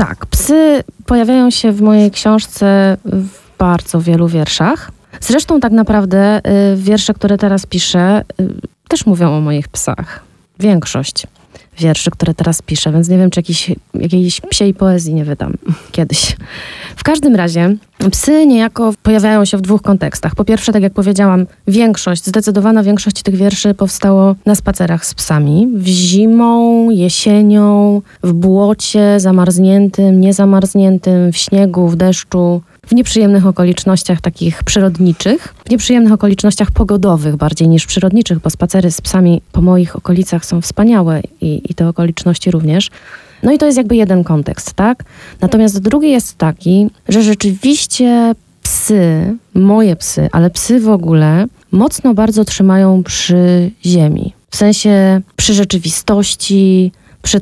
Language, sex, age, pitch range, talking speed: Polish, female, 20-39, 175-210 Hz, 140 wpm